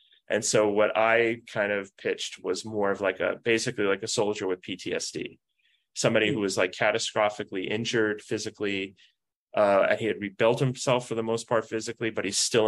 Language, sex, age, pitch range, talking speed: English, male, 20-39, 100-125 Hz, 180 wpm